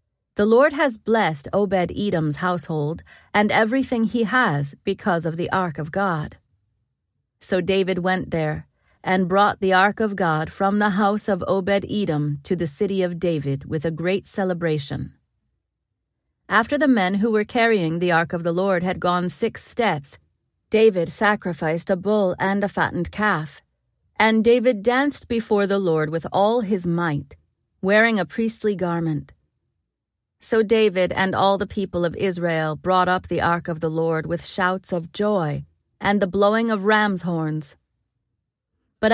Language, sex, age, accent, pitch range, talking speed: English, female, 40-59, American, 160-210 Hz, 160 wpm